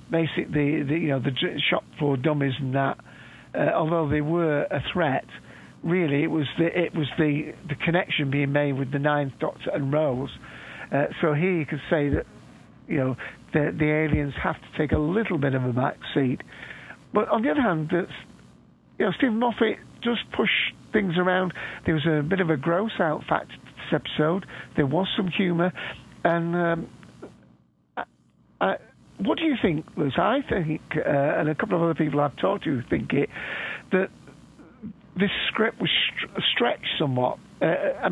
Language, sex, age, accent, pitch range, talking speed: English, male, 50-69, British, 150-185 Hz, 180 wpm